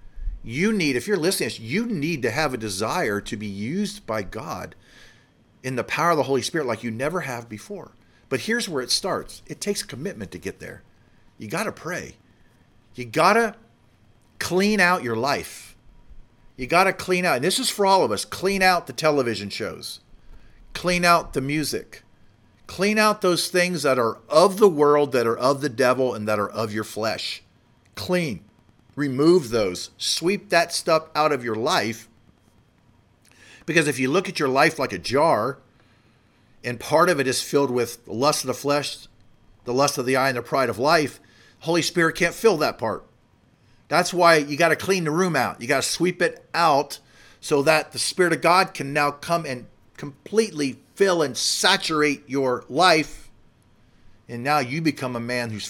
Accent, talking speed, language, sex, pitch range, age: American, 190 wpm, English, male, 115-170 Hz, 50-69